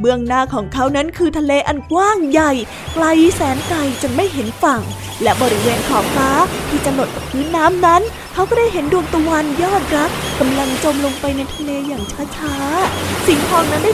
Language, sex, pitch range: Thai, female, 275-345 Hz